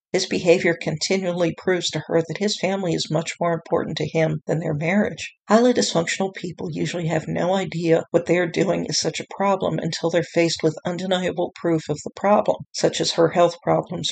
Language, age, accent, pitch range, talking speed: English, 50-69, American, 165-205 Hz, 200 wpm